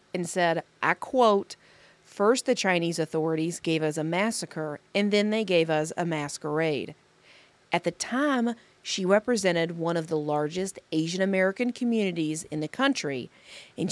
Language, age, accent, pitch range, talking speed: English, 40-59, American, 165-215 Hz, 150 wpm